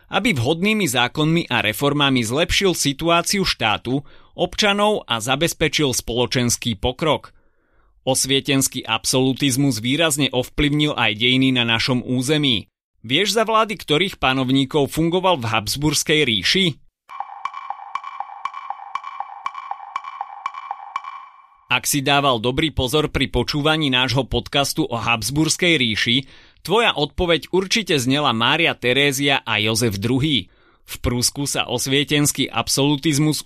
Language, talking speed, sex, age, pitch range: Slovak, 100 wpm, male, 30-49, 120-160 Hz